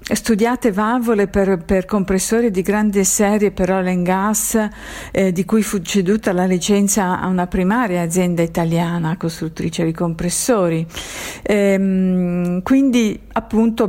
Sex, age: female, 50-69